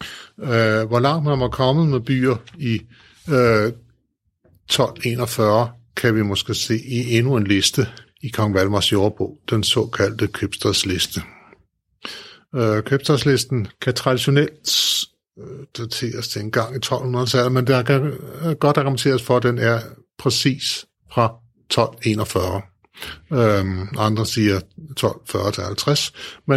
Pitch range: 110-130 Hz